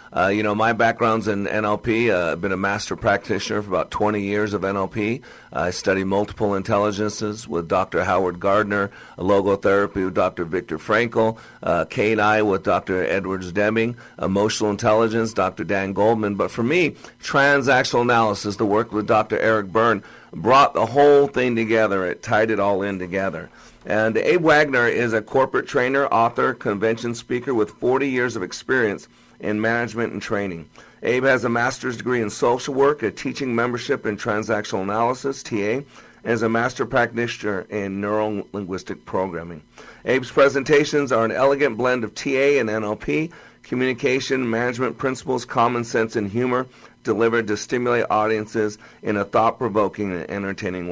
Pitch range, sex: 100-120 Hz, male